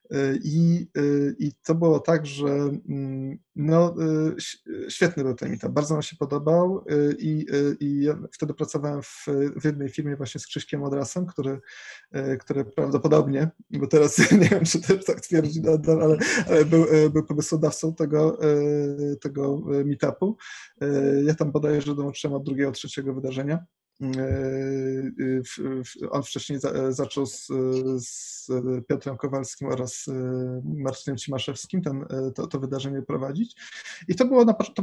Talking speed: 135 wpm